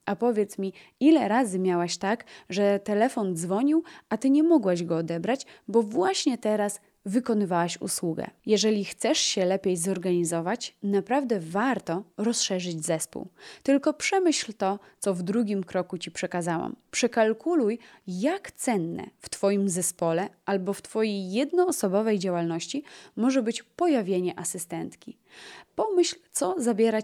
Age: 20-39